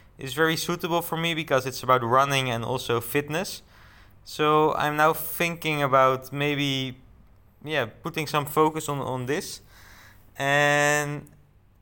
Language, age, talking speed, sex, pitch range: English, 20-39, 130 wpm, male, 110-145 Hz